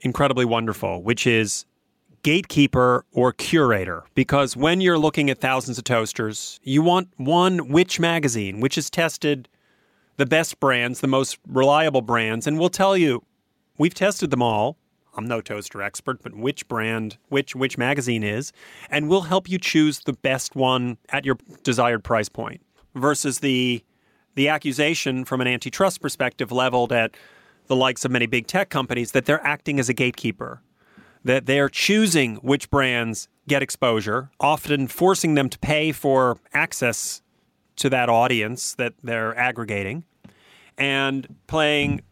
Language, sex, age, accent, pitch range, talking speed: English, male, 30-49, American, 120-150 Hz, 150 wpm